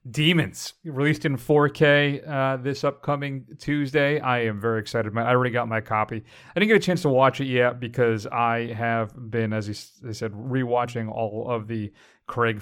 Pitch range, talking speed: 120-145 Hz, 190 wpm